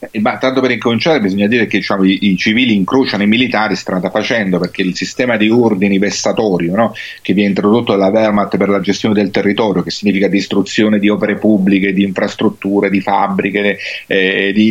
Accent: native